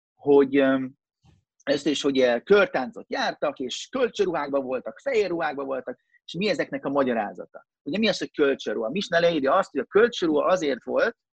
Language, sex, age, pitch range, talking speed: Hungarian, male, 30-49, 130-185 Hz, 155 wpm